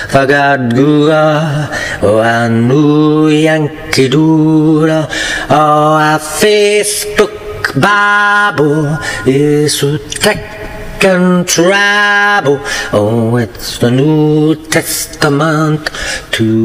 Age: 40-59